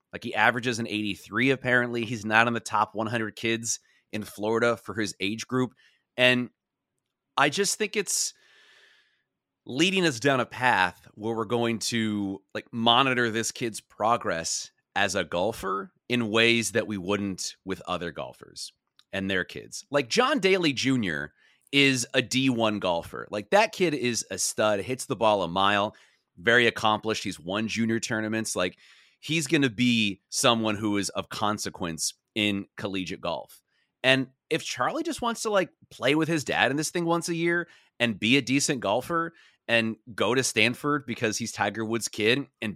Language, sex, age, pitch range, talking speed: English, male, 30-49, 105-145 Hz, 170 wpm